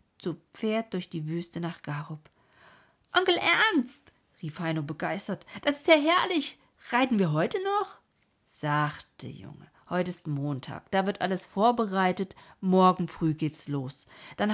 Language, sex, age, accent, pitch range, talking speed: German, female, 50-69, German, 165-230 Hz, 140 wpm